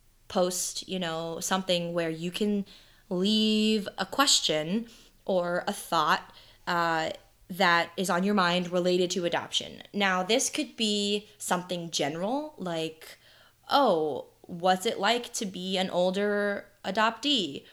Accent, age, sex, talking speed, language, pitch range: American, 20-39, female, 130 wpm, English, 170-215 Hz